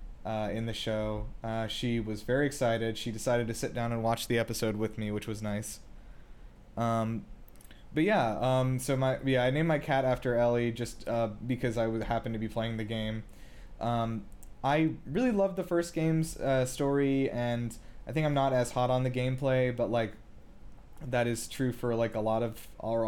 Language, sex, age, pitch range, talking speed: English, male, 20-39, 115-135 Hz, 200 wpm